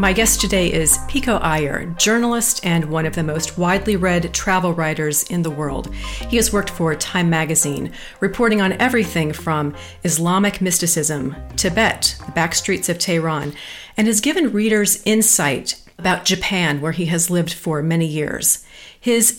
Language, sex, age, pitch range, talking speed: English, female, 40-59, 160-205 Hz, 160 wpm